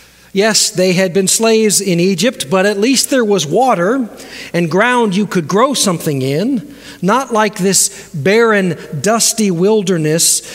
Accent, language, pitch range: American, English, 170-230 Hz